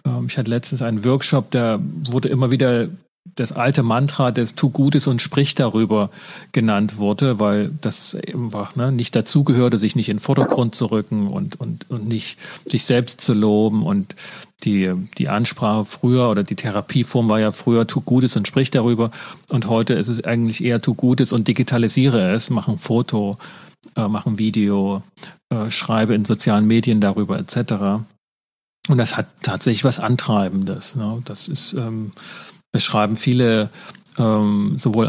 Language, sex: German, male